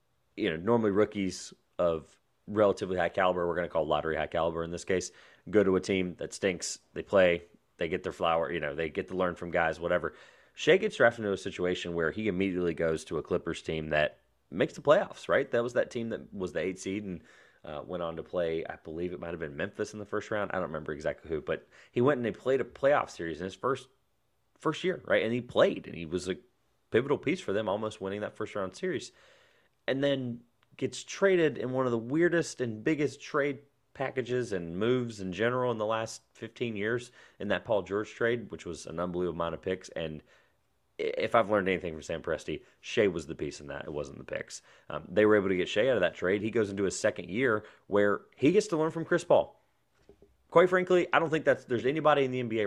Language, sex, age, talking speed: English, male, 30-49, 235 wpm